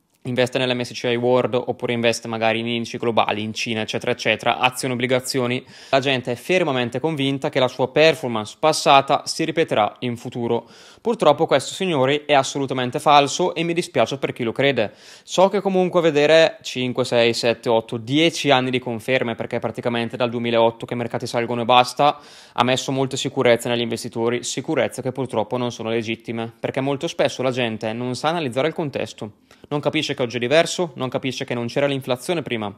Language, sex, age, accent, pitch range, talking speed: Italian, male, 20-39, native, 120-150 Hz, 185 wpm